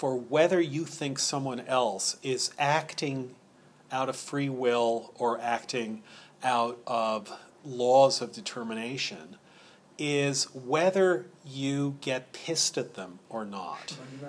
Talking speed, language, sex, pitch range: 120 wpm, English, male, 125-160 Hz